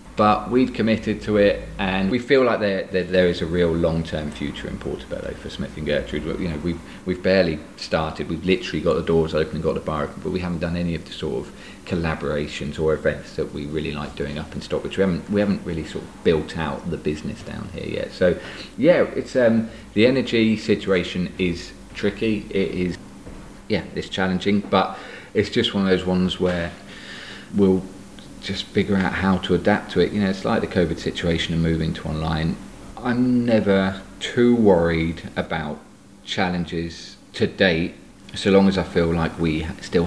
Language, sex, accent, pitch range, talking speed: English, male, British, 80-100 Hz, 200 wpm